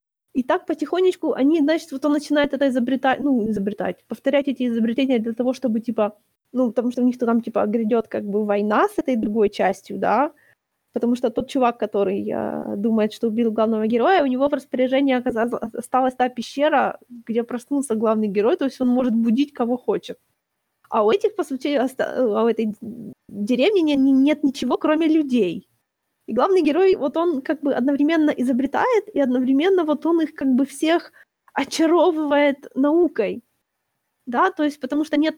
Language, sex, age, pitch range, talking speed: Ukrainian, female, 20-39, 235-300 Hz, 175 wpm